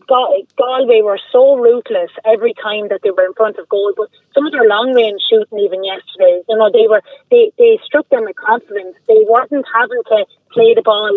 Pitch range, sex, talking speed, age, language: 200-275 Hz, female, 210 wpm, 30-49, English